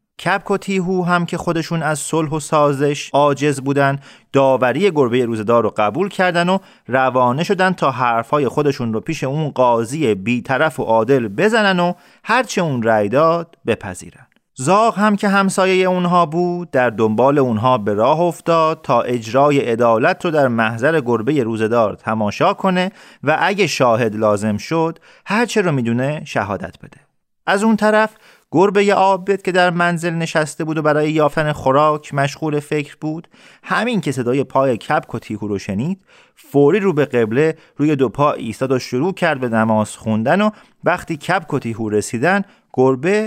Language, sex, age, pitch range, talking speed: Persian, male, 30-49, 125-175 Hz, 160 wpm